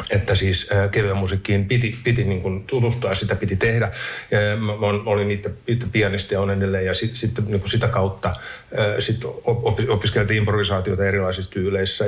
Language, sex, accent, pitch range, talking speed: Finnish, male, native, 100-120 Hz, 145 wpm